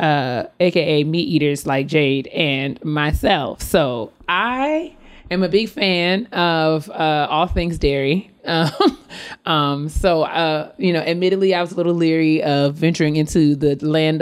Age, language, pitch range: 30-49, English, 145-180 Hz